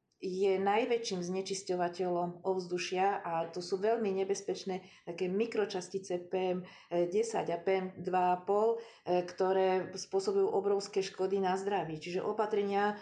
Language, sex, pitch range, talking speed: Slovak, female, 180-205 Hz, 110 wpm